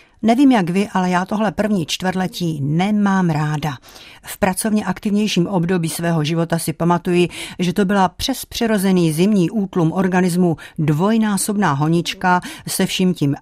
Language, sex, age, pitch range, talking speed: Czech, female, 50-69, 155-190 Hz, 140 wpm